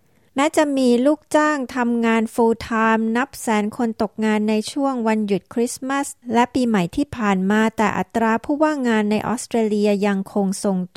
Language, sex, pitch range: Thai, female, 200-245 Hz